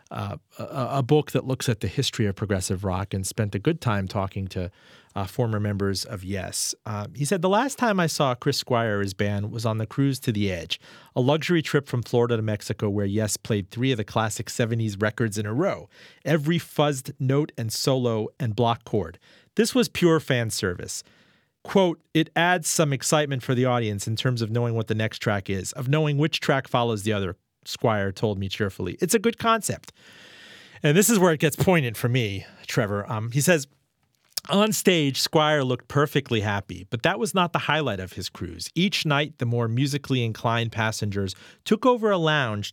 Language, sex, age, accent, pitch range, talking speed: English, male, 40-59, American, 105-150 Hz, 205 wpm